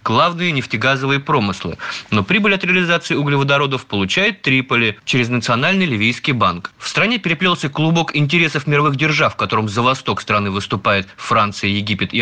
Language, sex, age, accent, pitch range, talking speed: Russian, male, 30-49, native, 110-155 Hz, 145 wpm